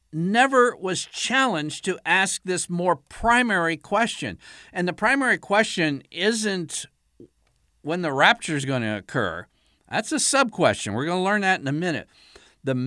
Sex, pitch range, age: male, 115-175 Hz, 60-79